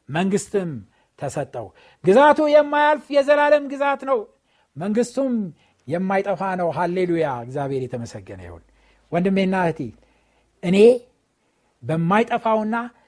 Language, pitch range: Amharic, 165-235 Hz